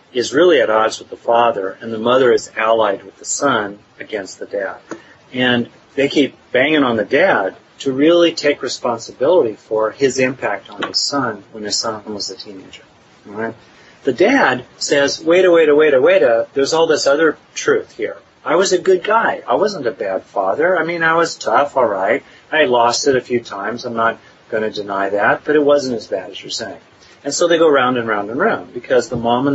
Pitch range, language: 115-160 Hz, English